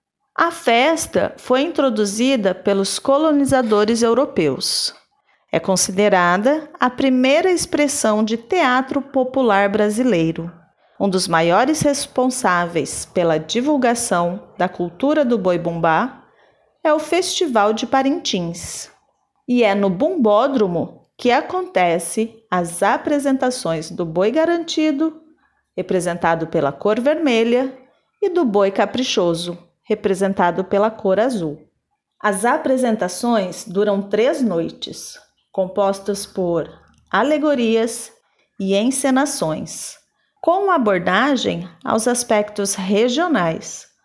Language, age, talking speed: Portuguese, 30-49, 95 wpm